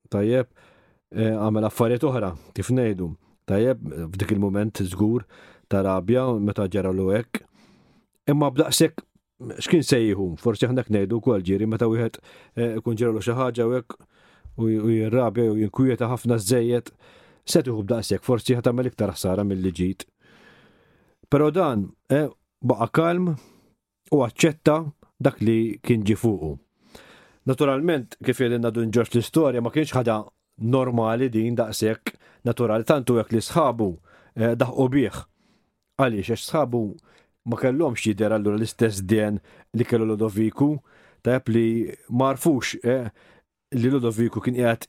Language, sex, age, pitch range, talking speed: English, male, 40-59, 110-130 Hz, 80 wpm